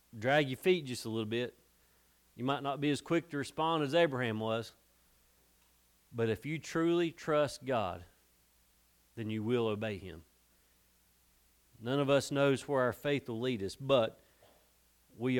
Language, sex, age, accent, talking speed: English, male, 40-59, American, 160 wpm